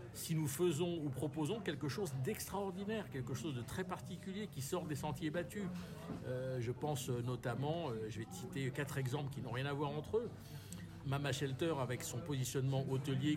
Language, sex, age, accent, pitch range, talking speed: French, male, 50-69, French, 120-155 Hz, 190 wpm